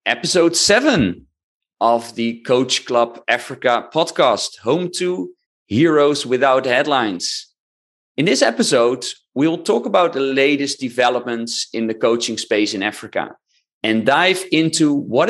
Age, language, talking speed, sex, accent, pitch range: 40-59, English, 125 wpm, male, Dutch, 115-165 Hz